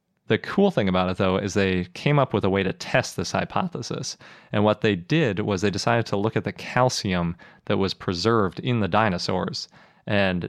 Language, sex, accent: English, male, American